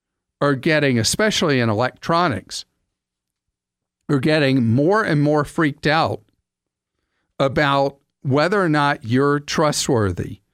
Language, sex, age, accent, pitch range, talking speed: English, male, 50-69, American, 120-155 Hz, 100 wpm